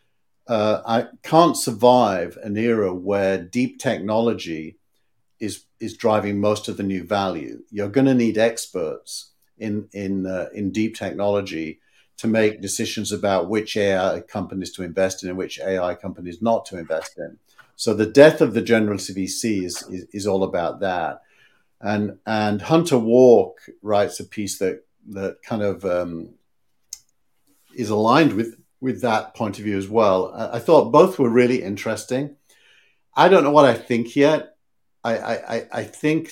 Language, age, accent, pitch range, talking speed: English, 50-69, British, 100-120 Hz, 160 wpm